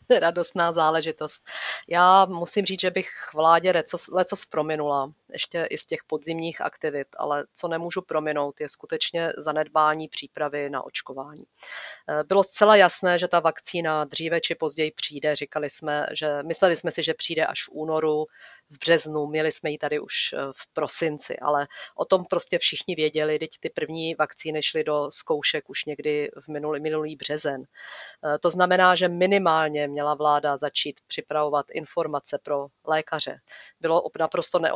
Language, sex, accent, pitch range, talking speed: Czech, female, native, 150-165 Hz, 150 wpm